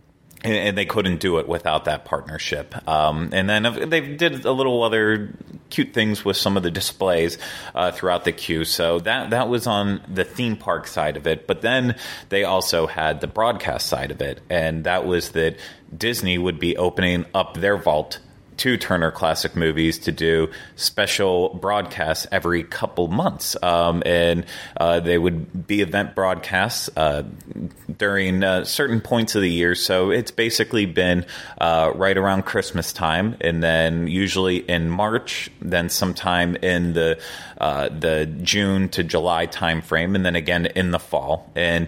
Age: 30-49